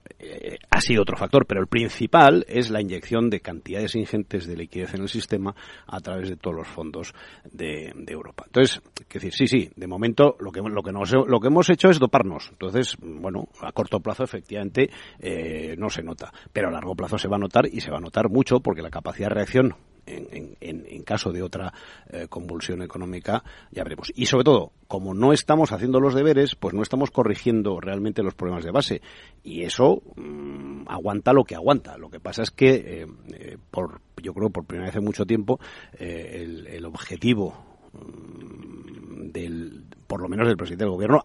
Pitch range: 90-125 Hz